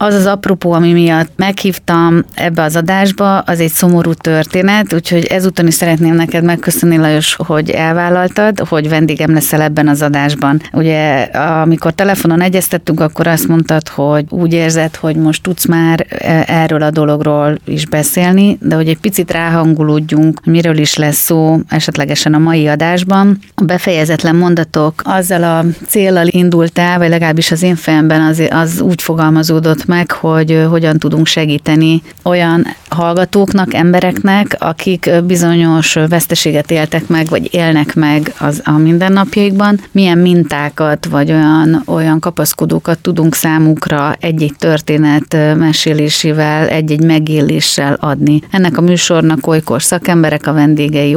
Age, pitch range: 30-49, 155-175 Hz